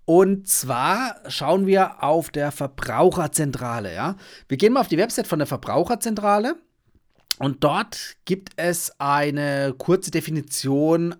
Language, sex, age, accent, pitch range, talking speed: German, male, 30-49, German, 135-185 Hz, 130 wpm